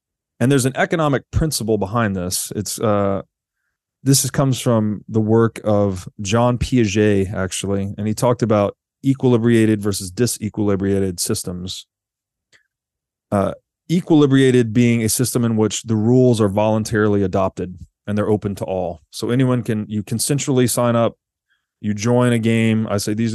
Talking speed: 150 wpm